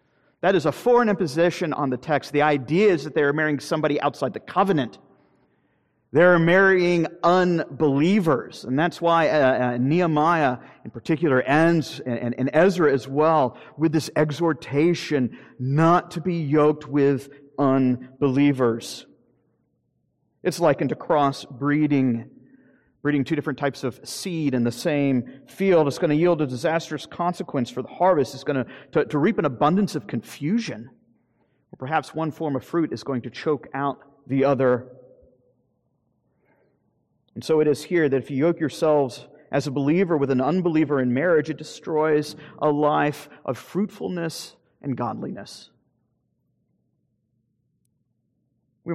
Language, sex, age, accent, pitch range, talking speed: English, male, 40-59, American, 130-160 Hz, 145 wpm